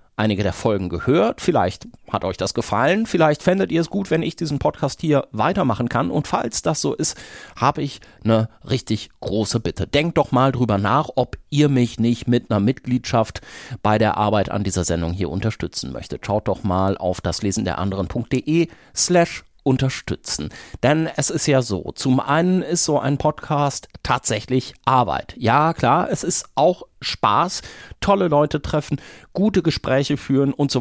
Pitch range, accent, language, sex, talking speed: 120-160 Hz, German, German, male, 170 wpm